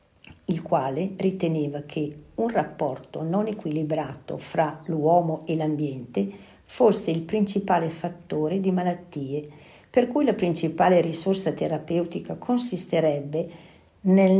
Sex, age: female, 50-69